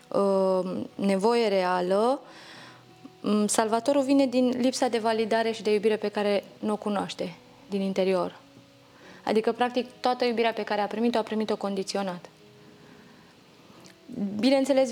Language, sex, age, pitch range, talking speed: Romanian, female, 20-39, 195-240 Hz, 120 wpm